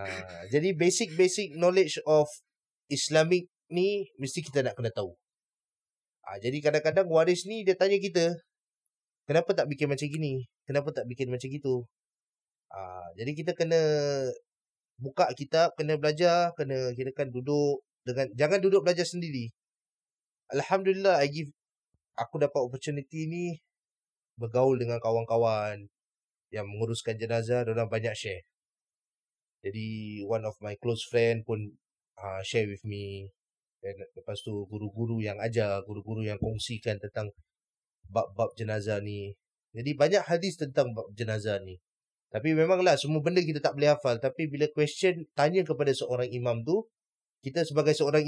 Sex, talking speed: male, 140 wpm